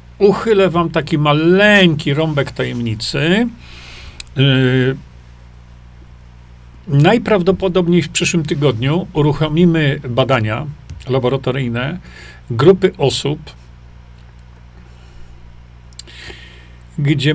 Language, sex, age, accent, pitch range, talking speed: Polish, male, 40-59, native, 110-160 Hz, 55 wpm